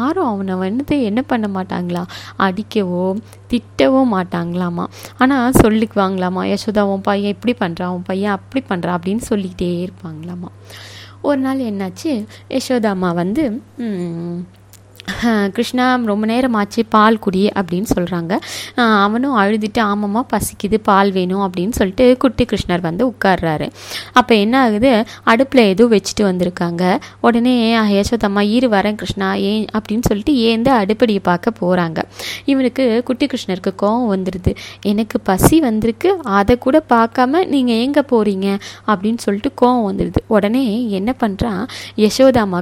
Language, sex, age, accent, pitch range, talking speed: Tamil, female, 20-39, native, 190-255 Hz, 120 wpm